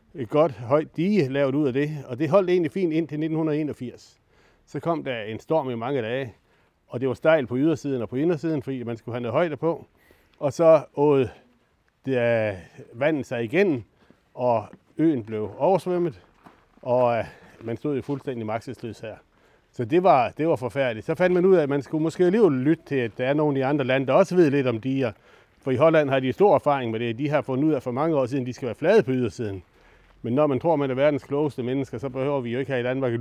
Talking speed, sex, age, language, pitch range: 235 wpm, male, 60-79, Danish, 120-150 Hz